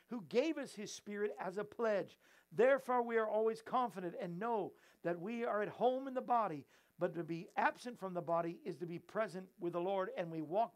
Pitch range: 180-240 Hz